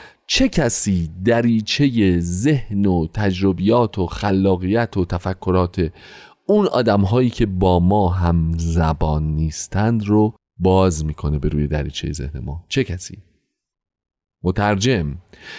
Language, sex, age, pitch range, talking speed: Persian, male, 30-49, 90-135 Hz, 110 wpm